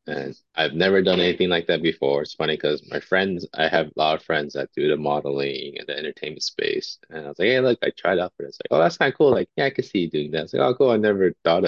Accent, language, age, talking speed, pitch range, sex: American, English, 20-39, 305 wpm, 80-110 Hz, male